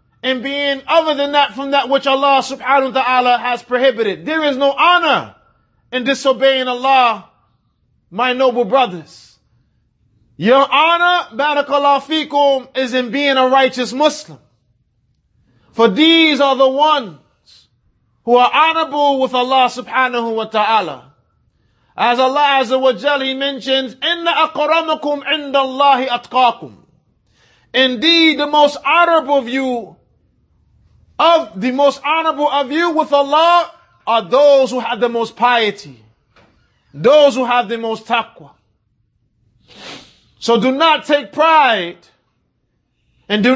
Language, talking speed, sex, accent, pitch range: English, 125 wpm, male, American, 230-285 Hz